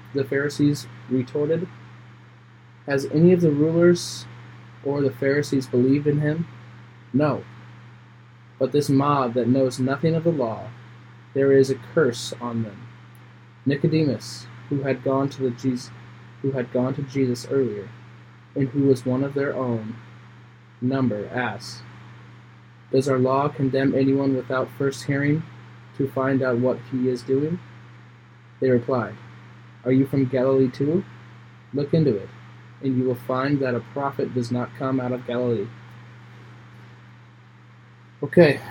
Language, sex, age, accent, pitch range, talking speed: English, male, 20-39, American, 120-135 Hz, 140 wpm